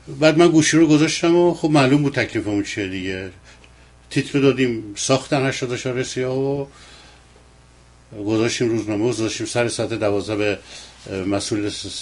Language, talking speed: Persian, 145 wpm